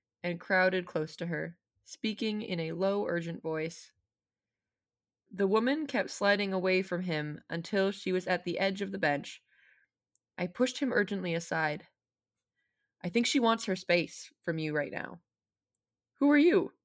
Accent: American